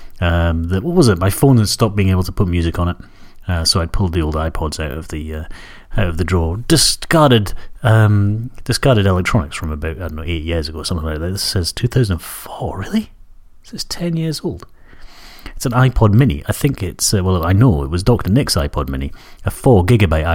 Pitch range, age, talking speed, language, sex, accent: 80-115 Hz, 30-49, 235 wpm, English, male, British